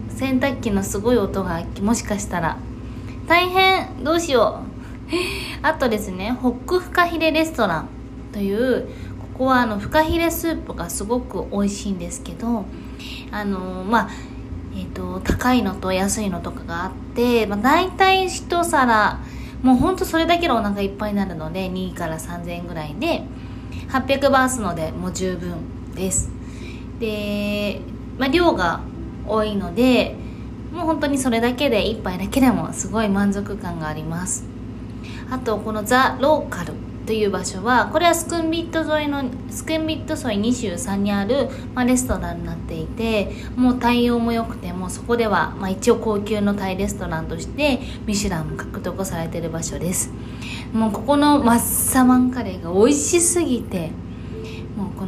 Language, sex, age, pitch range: Japanese, female, 20-39, 190-270 Hz